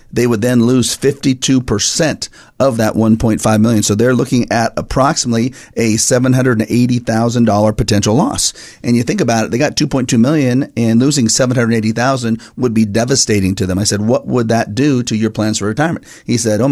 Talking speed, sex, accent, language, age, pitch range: 175 wpm, male, American, English, 40-59, 110-125 Hz